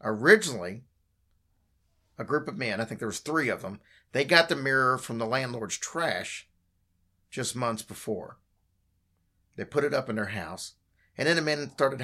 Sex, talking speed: male, 175 wpm